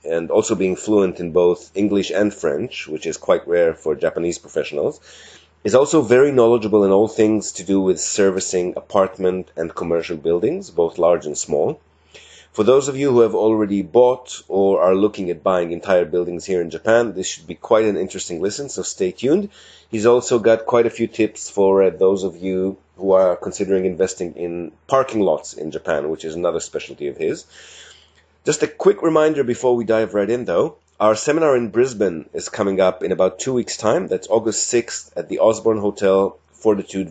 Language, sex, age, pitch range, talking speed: English, male, 30-49, 95-140 Hz, 195 wpm